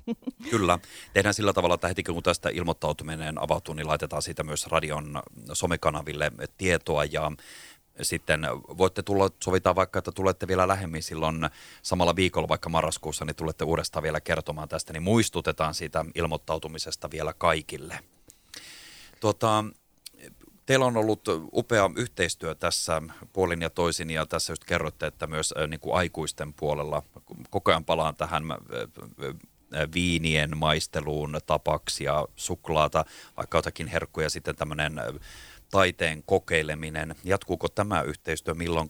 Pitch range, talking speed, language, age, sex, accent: 80-95 Hz, 130 wpm, Finnish, 30-49, male, native